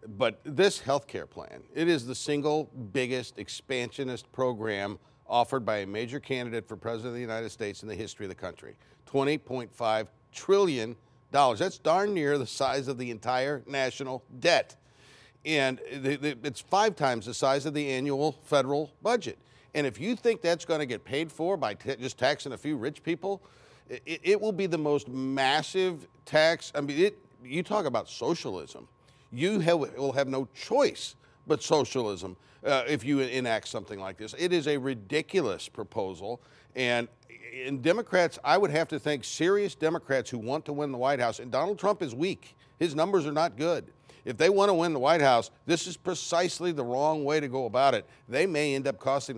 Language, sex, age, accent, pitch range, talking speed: English, male, 50-69, American, 125-160 Hz, 190 wpm